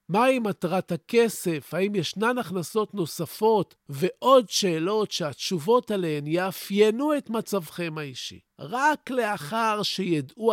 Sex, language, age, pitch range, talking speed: male, Hebrew, 50-69, 155-225 Hz, 105 wpm